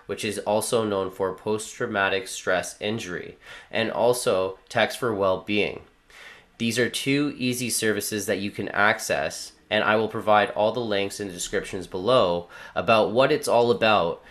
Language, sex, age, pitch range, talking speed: English, male, 20-39, 95-110 Hz, 160 wpm